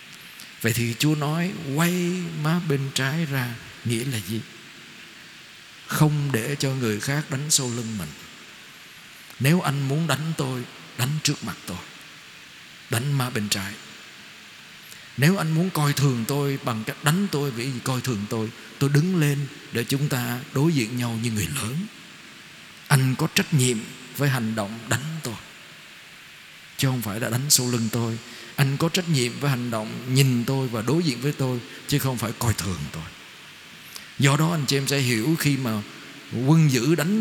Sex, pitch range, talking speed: male, 120-155 Hz, 175 wpm